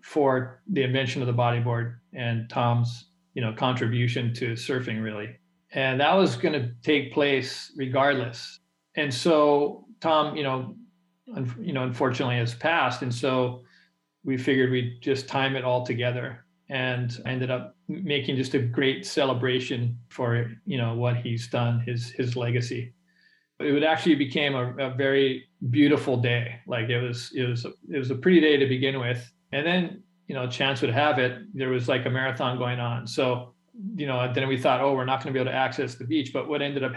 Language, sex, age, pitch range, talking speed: English, male, 40-59, 125-145 Hz, 195 wpm